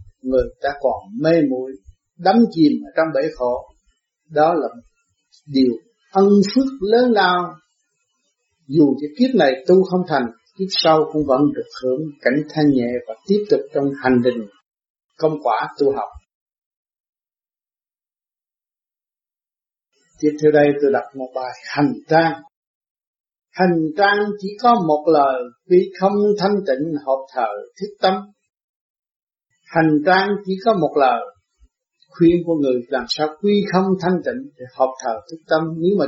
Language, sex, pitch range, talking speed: Vietnamese, male, 140-190 Hz, 145 wpm